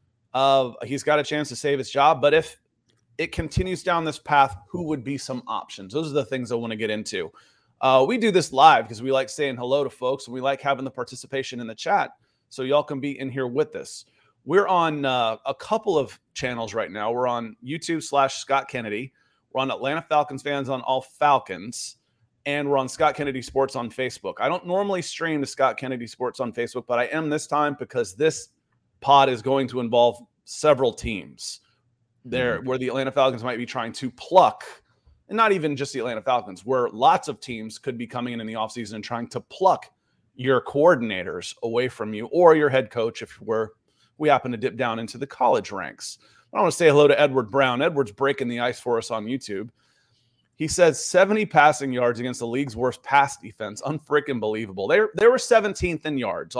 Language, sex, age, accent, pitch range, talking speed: English, male, 30-49, American, 120-145 Hz, 215 wpm